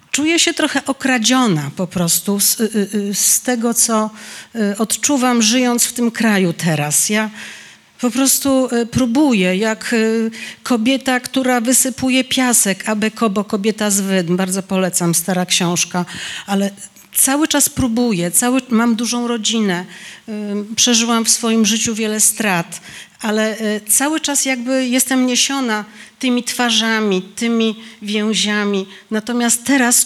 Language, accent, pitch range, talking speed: Polish, native, 210-250 Hz, 120 wpm